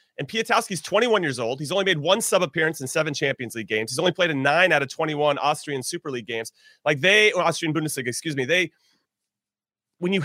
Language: English